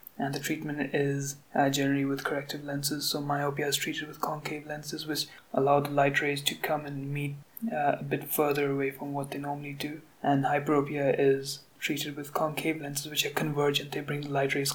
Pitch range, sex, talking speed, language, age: 140-150 Hz, male, 205 wpm, English, 20-39